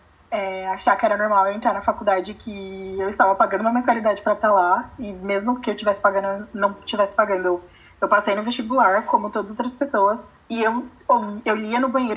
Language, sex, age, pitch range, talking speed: Portuguese, female, 20-39, 200-245 Hz, 210 wpm